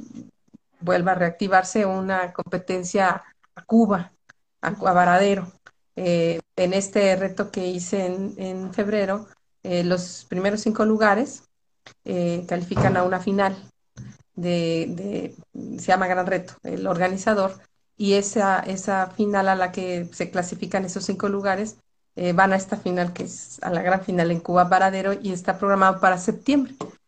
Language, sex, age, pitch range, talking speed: Spanish, female, 30-49, 180-200 Hz, 150 wpm